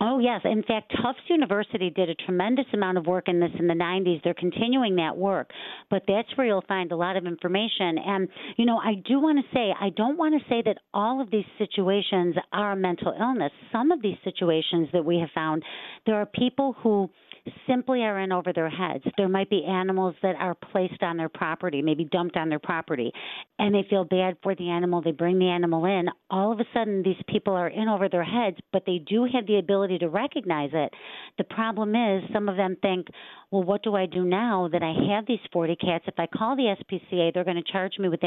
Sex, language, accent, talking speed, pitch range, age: female, English, American, 230 wpm, 175-210 Hz, 50-69